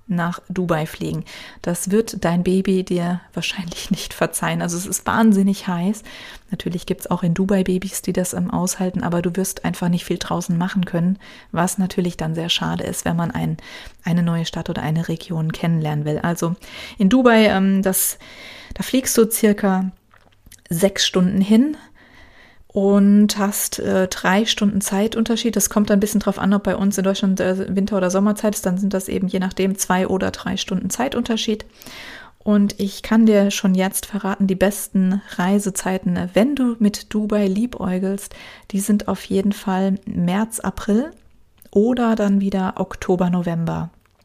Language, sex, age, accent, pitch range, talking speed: German, female, 30-49, German, 180-205 Hz, 170 wpm